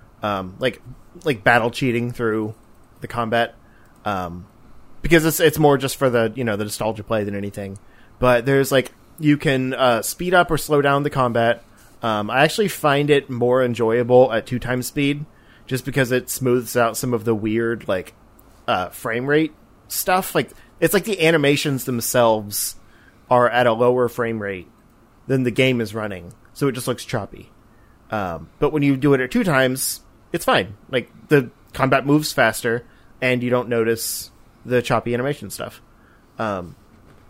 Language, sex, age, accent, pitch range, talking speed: English, male, 30-49, American, 115-140 Hz, 175 wpm